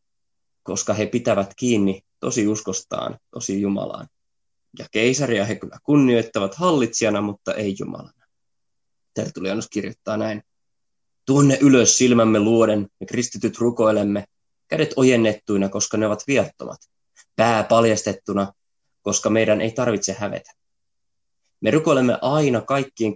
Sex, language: male, Finnish